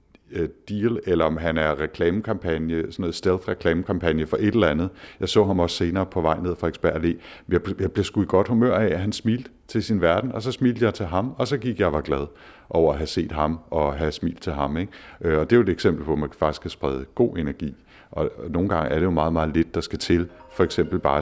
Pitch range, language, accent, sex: 80-100 Hz, Danish, native, male